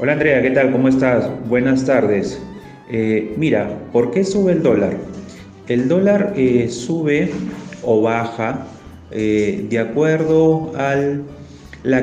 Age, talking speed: 30-49, 130 wpm